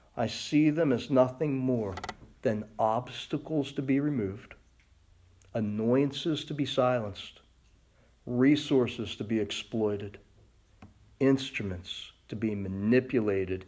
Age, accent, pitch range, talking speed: 40-59, American, 100-140 Hz, 100 wpm